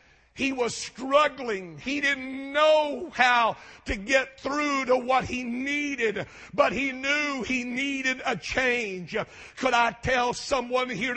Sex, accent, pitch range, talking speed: male, American, 255-285 Hz, 140 wpm